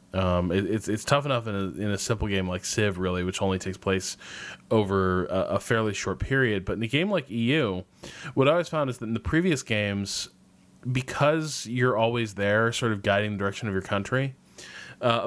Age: 20-39